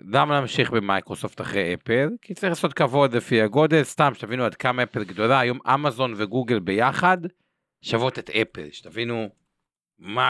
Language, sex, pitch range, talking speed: Hebrew, male, 100-130 Hz, 150 wpm